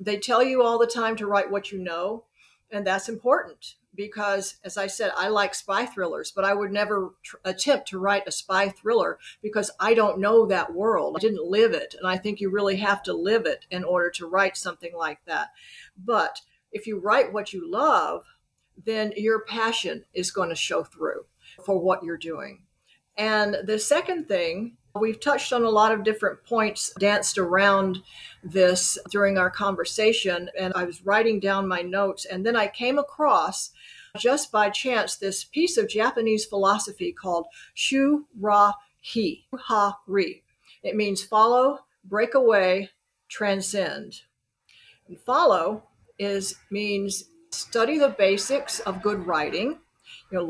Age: 50-69